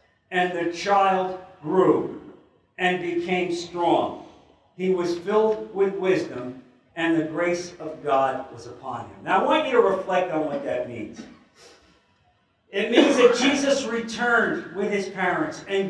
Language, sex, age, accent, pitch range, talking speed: English, male, 50-69, American, 150-190 Hz, 145 wpm